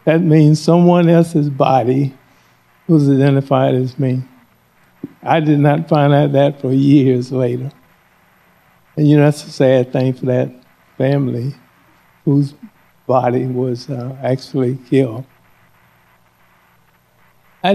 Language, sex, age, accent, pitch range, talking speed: English, male, 60-79, American, 125-150 Hz, 120 wpm